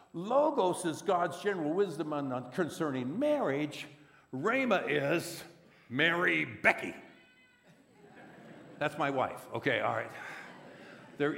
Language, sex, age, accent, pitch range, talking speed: English, male, 60-79, American, 145-195 Hz, 95 wpm